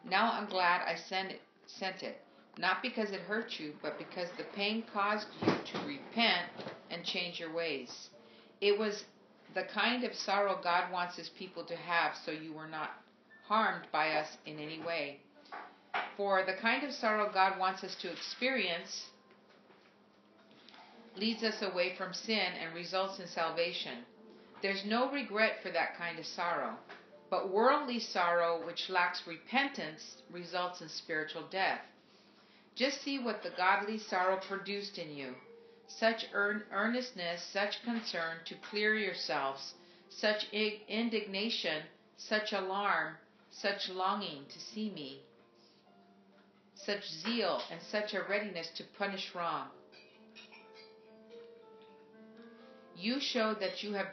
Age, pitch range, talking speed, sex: 50-69, 170-215 Hz, 135 wpm, female